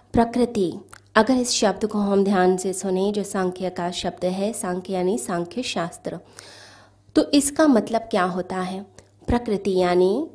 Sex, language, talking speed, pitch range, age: female, Hindi, 150 wpm, 185-230 Hz, 20-39